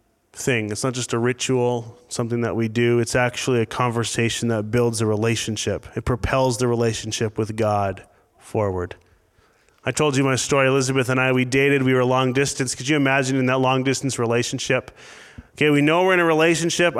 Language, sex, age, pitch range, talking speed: English, male, 30-49, 115-135 Hz, 190 wpm